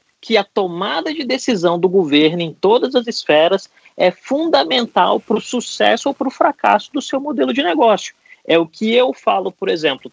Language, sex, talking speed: Portuguese, male, 190 wpm